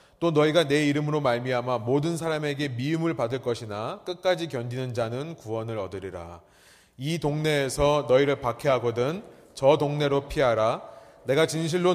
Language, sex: Korean, male